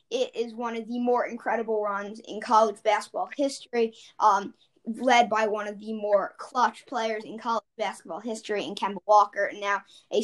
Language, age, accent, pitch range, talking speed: English, 10-29, American, 215-245 Hz, 180 wpm